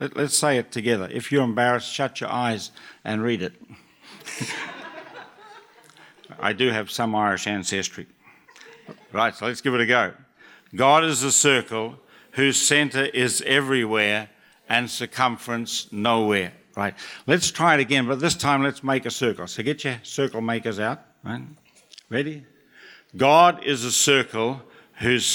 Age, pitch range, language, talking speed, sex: 60-79, 110-140 Hz, English, 145 wpm, male